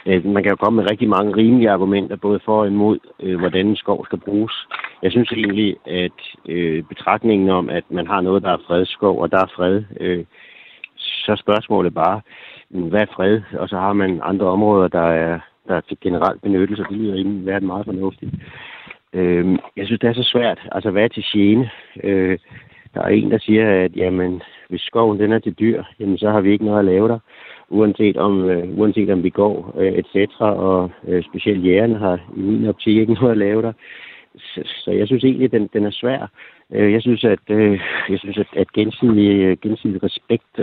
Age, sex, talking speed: 60-79, male, 205 wpm